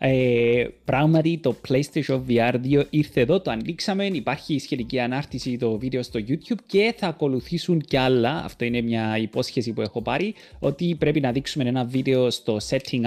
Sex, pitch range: male, 115-160 Hz